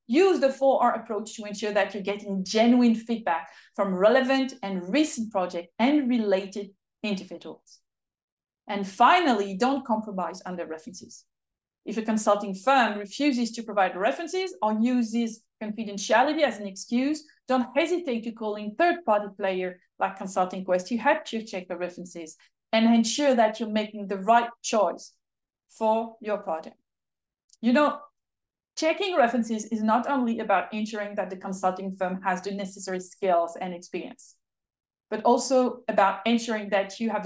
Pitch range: 200-265 Hz